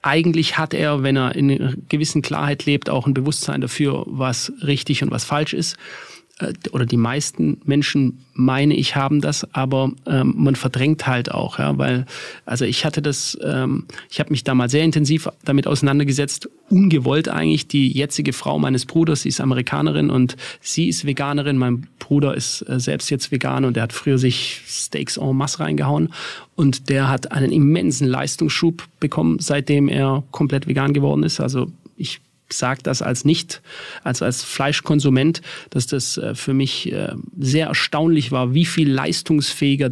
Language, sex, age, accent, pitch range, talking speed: German, male, 40-59, German, 130-150 Hz, 170 wpm